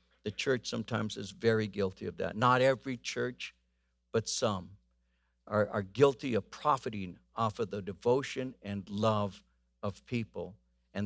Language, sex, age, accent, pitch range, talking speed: English, male, 60-79, American, 85-130 Hz, 145 wpm